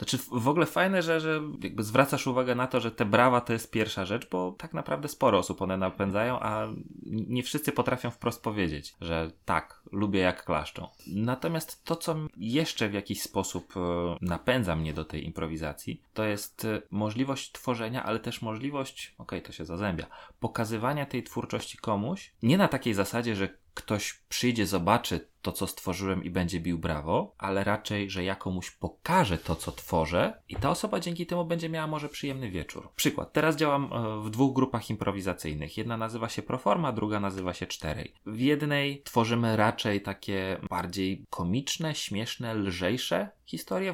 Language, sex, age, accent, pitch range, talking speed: Polish, male, 30-49, native, 95-135 Hz, 170 wpm